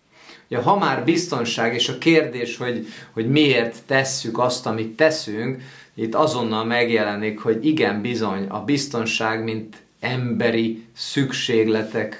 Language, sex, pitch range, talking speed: Hungarian, male, 110-140 Hz, 125 wpm